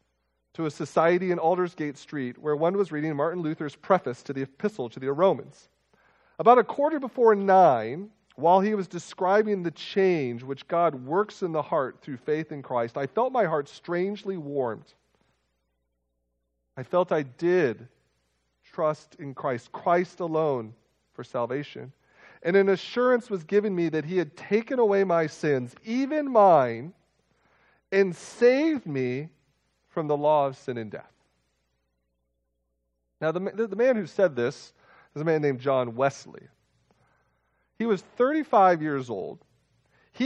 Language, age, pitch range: English, 40-59, 115-195 Hz